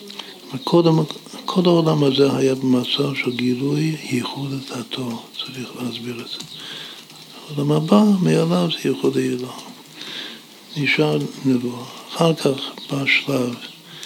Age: 60-79